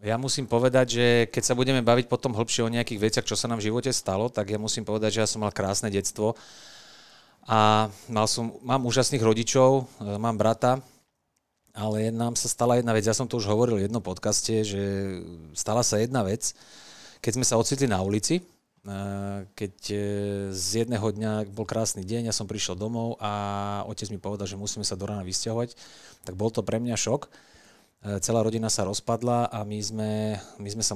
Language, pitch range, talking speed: Slovak, 105-120 Hz, 190 wpm